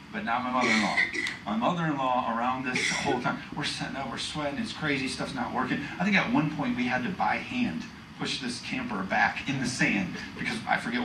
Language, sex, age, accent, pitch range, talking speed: English, male, 40-59, American, 165-235 Hz, 245 wpm